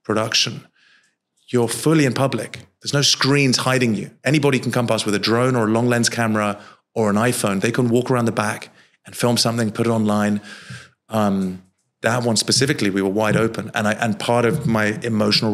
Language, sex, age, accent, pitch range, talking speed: English, male, 30-49, British, 105-130 Hz, 200 wpm